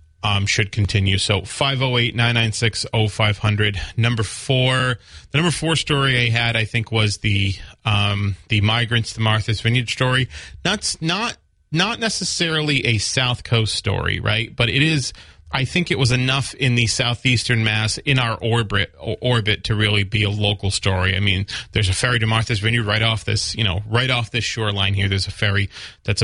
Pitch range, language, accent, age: 105-120 Hz, English, American, 30-49